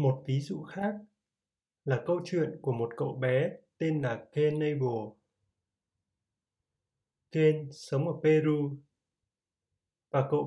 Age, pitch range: 20-39, 120-155 Hz